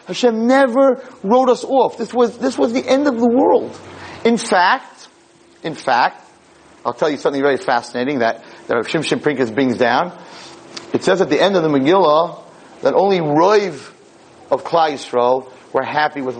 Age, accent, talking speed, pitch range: 40-59, American, 175 wpm, 130-180 Hz